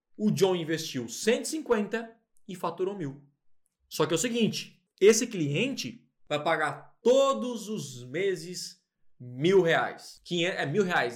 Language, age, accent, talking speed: Portuguese, 20-39, Brazilian, 130 wpm